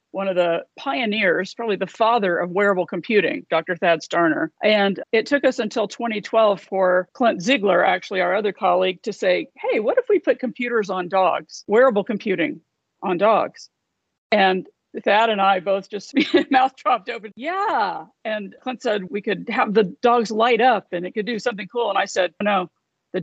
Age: 50-69